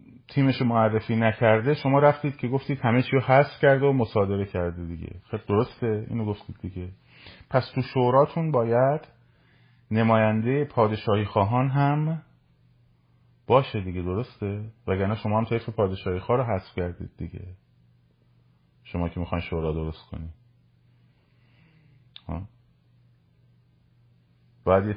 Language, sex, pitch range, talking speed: Persian, male, 90-125 Hz, 120 wpm